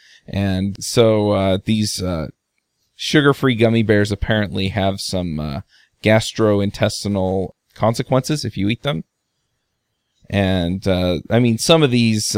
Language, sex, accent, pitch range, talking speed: English, male, American, 100-115 Hz, 120 wpm